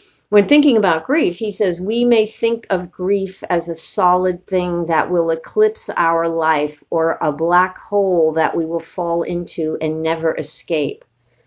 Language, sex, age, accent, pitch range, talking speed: English, female, 50-69, American, 160-200 Hz, 165 wpm